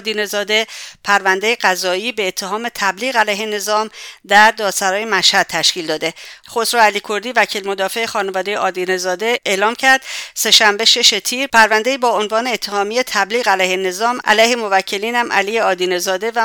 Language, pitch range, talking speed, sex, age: English, 185-225 Hz, 135 wpm, female, 50-69